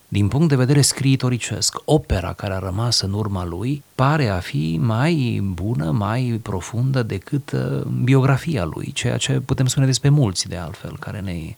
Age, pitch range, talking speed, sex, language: 30-49, 90-120 Hz, 165 wpm, male, Romanian